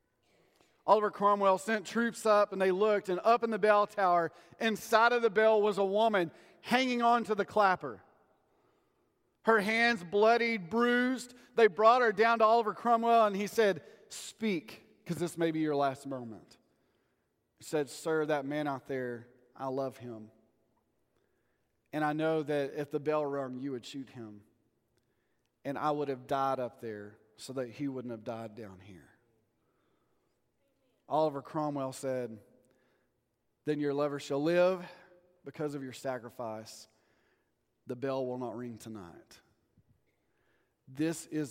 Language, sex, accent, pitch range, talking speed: English, male, American, 130-205 Hz, 150 wpm